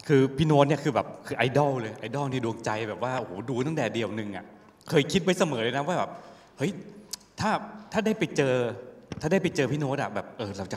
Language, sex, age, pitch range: Thai, male, 20-39, 115-155 Hz